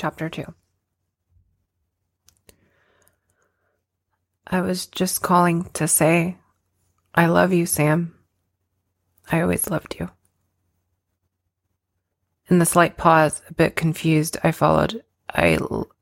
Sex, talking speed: female, 95 wpm